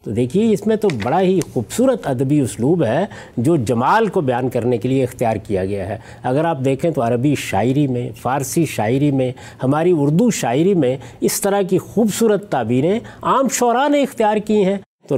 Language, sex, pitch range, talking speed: Urdu, male, 130-195 Hz, 190 wpm